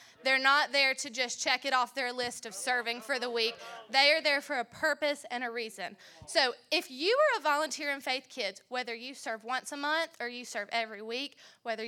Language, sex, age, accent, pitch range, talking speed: English, female, 20-39, American, 225-275 Hz, 225 wpm